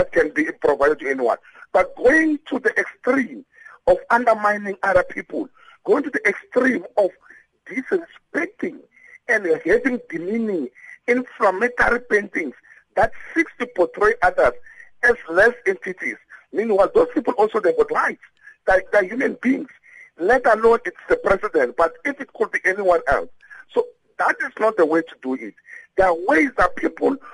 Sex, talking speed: male, 145 wpm